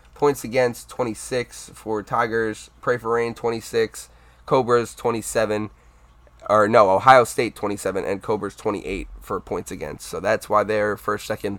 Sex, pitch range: male, 100-115 Hz